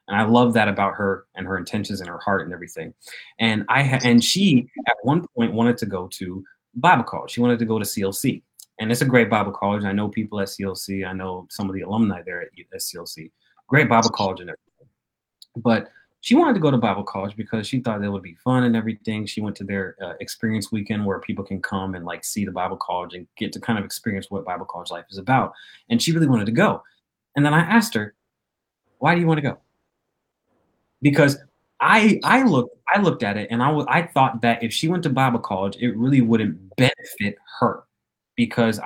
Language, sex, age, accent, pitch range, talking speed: English, male, 20-39, American, 100-130 Hz, 230 wpm